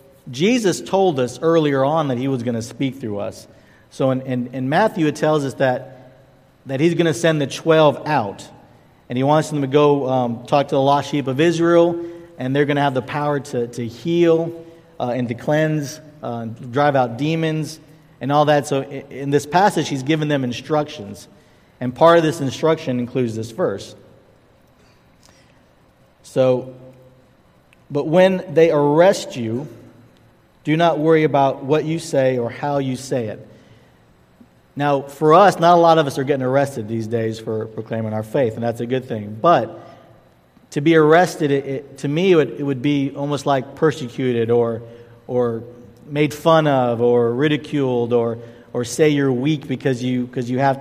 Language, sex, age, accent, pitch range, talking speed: English, male, 50-69, American, 120-155 Hz, 180 wpm